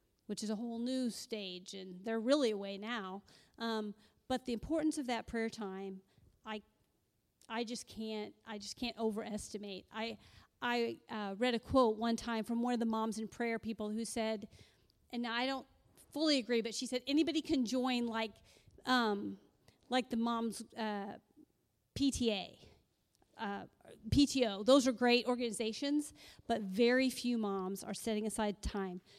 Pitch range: 205-240 Hz